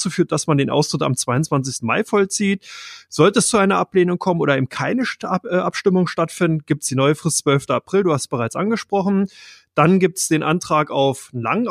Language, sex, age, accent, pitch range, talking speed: German, male, 30-49, German, 145-180 Hz, 200 wpm